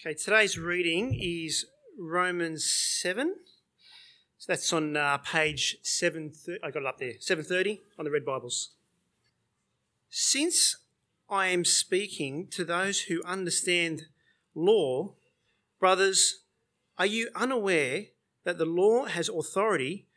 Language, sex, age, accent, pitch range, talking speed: English, male, 40-59, Australian, 150-195 Hz, 120 wpm